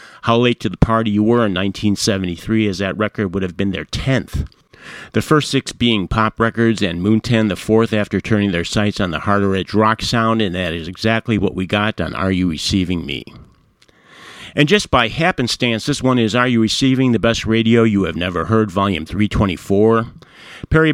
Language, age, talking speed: English, 50-69, 200 wpm